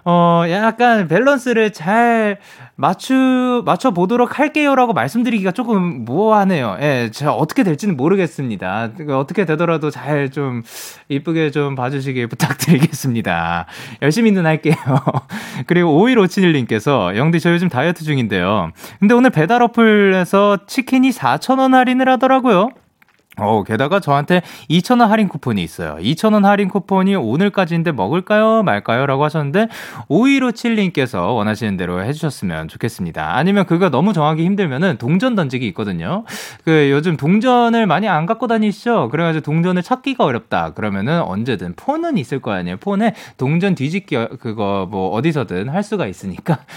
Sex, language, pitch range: male, Korean, 130-210 Hz